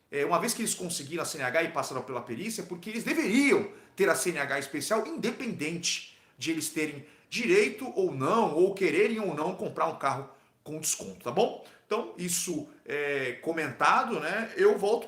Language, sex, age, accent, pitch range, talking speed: Portuguese, male, 40-59, Brazilian, 155-250 Hz, 170 wpm